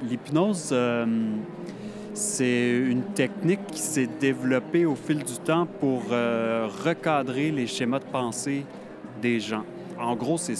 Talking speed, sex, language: 135 wpm, male, French